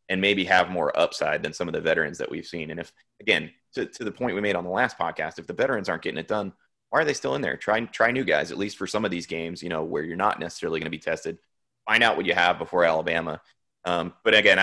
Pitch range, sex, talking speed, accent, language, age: 85-105 Hz, male, 285 wpm, American, English, 30-49